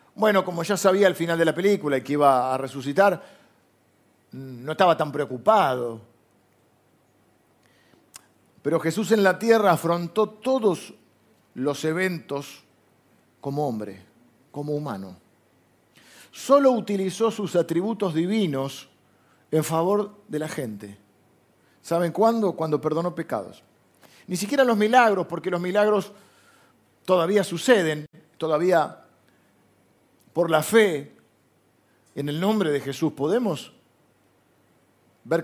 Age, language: 50-69, Spanish